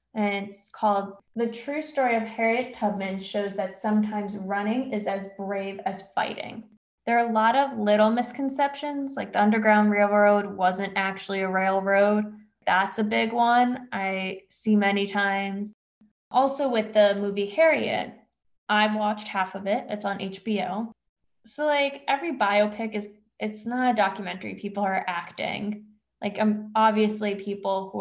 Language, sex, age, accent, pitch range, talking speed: English, female, 10-29, American, 195-225 Hz, 150 wpm